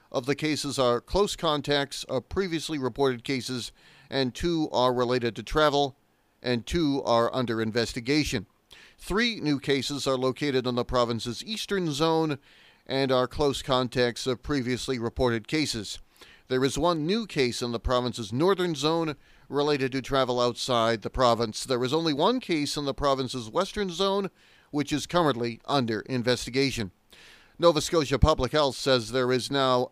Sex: male